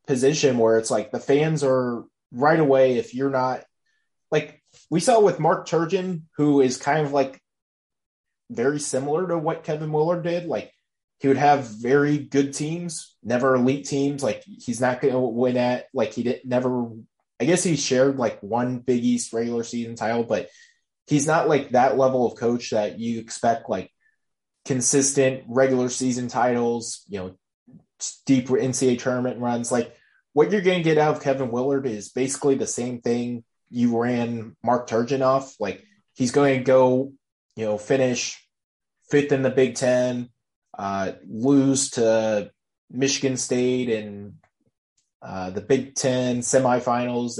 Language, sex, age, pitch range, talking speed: English, male, 20-39, 120-140 Hz, 160 wpm